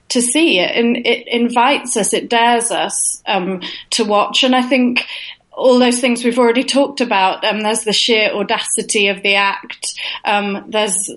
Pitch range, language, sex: 210-260 Hz, English, female